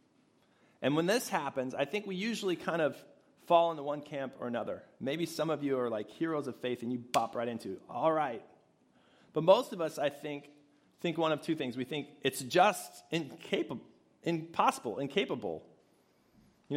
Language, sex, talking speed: English, male, 185 wpm